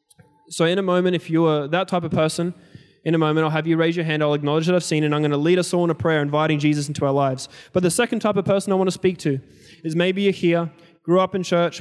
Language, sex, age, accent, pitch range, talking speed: English, male, 20-39, Australian, 150-175 Hz, 295 wpm